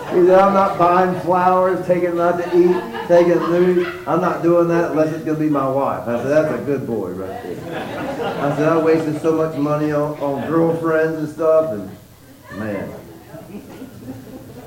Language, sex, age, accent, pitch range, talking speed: English, male, 40-59, American, 145-180 Hz, 190 wpm